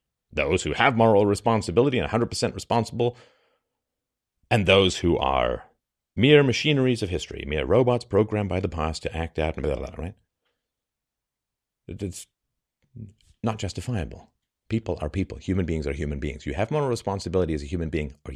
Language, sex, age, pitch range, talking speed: English, male, 40-59, 80-115 Hz, 165 wpm